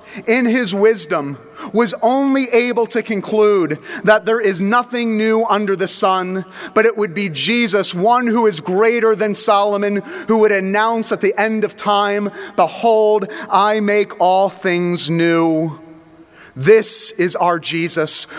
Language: English